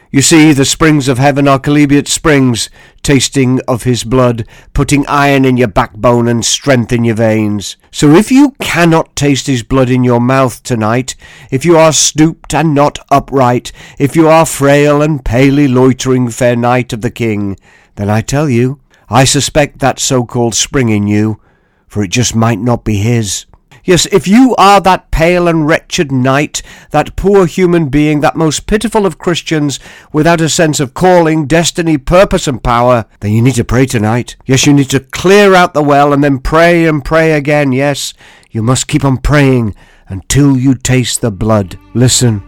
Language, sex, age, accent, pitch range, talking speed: English, male, 50-69, British, 120-155 Hz, 185 wpm